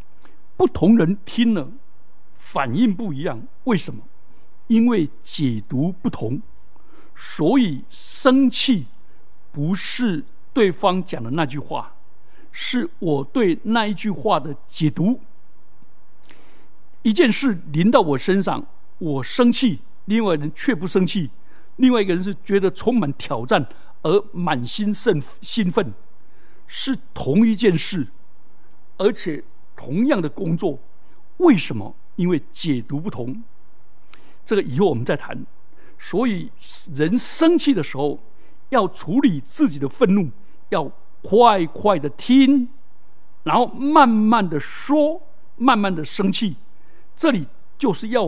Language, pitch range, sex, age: Chinese, 150-245 Hz, male, 60-79